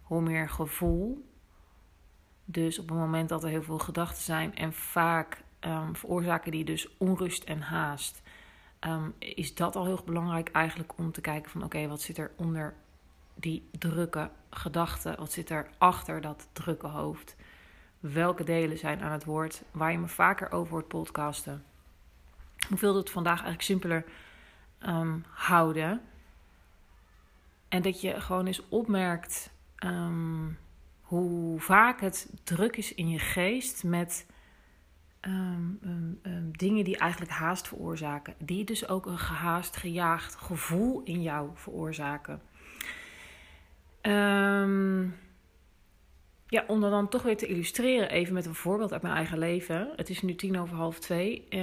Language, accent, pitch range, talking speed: Dutch, Dutch, 150-185 Hz, 140 wpm